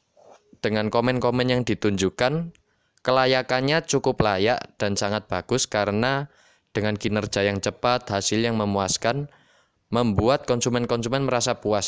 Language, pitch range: Indonesian, 105-135 Hz